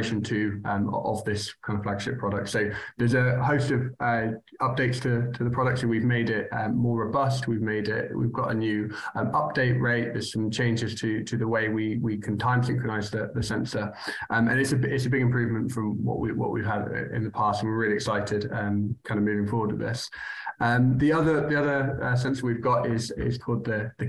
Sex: male